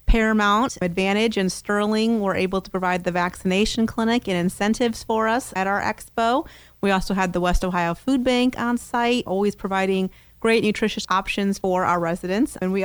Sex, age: female, 30-49